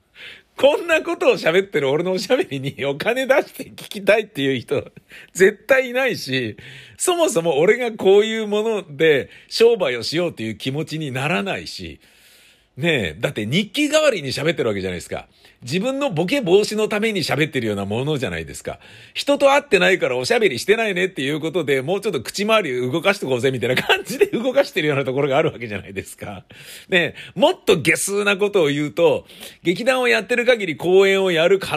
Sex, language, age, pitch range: male, Japanese, 50-69, 130-215 Hz